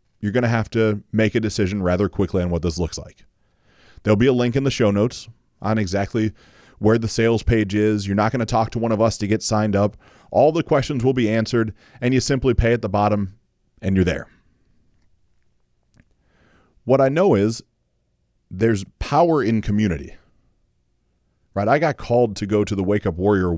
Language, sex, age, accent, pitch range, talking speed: English, male, 30-49, American, 95-120 Hz, 200 wpm